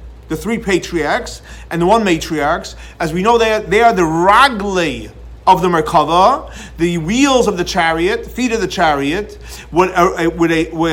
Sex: male